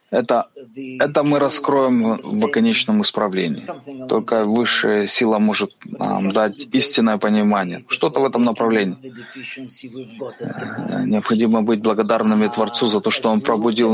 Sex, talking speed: male, 120 wpm